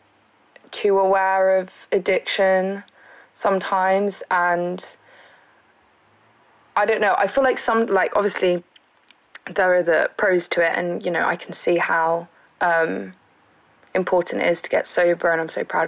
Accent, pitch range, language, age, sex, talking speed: British, 170-200 Hz, English, 20-39, female, 145 wpm